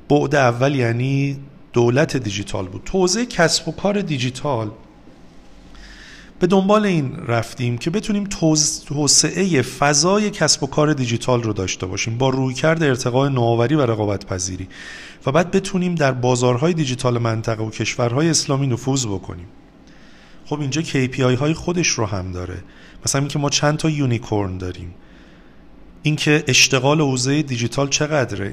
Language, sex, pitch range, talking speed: Persian, male, 120-150 Hz, 140 wpm